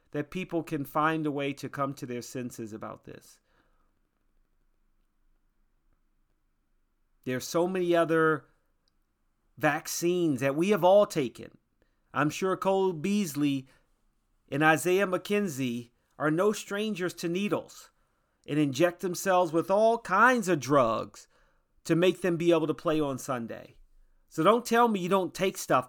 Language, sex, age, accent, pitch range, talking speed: English, male, 30-49, American, 125-170 Hz, 140 wpm